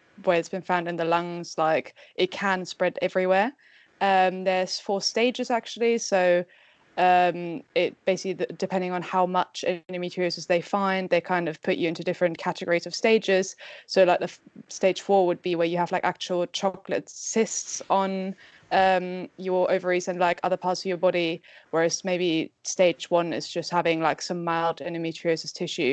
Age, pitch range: 20-39, 175-190 Hz